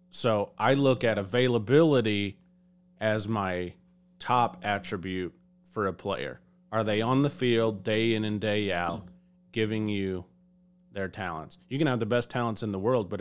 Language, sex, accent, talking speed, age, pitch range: English, male, American, 165 wpm, 30-49, 105-150 Hz